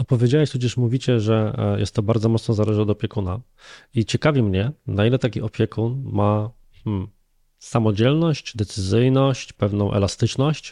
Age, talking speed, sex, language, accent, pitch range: 20-39, 135 wpm, male, Polish, native, 110-140 Hz